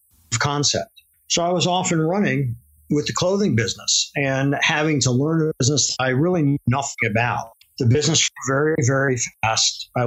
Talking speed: 180 wpm